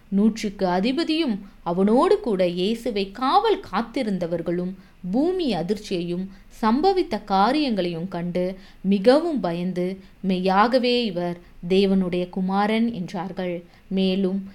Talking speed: 85 wpm